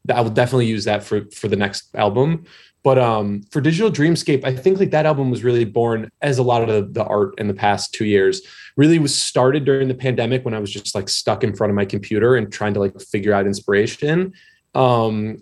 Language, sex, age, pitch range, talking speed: English, male, 20-39, 105-130 Hz, 235 wpm